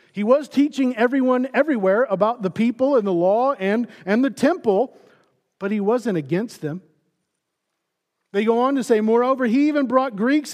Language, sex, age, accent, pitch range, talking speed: English, male, 40-59, American, 200-270 Hz, 170 wpm